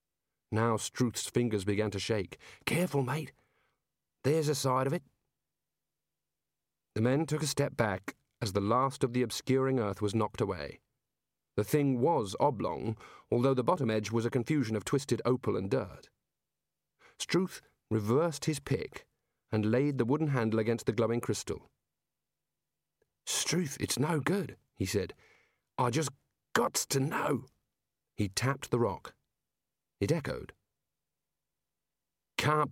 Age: 40-59